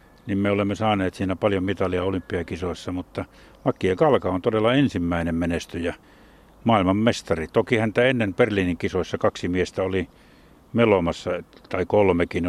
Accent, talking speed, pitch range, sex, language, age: native, 130 wpm, 90-105 Hz, male, Finnish, 60-79